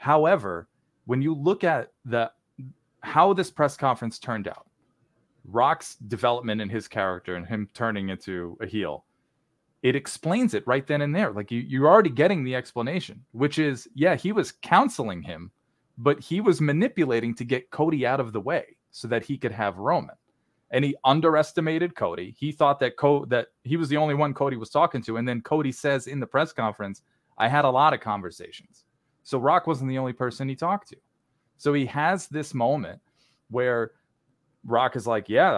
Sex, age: male, 30-49